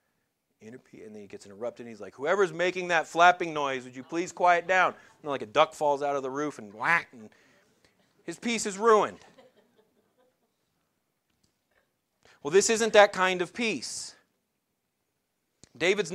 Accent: American